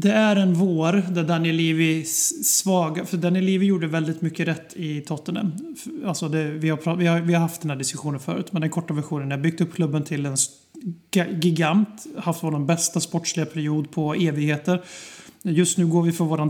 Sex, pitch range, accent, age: male, 160-185 Hz, native, 30-49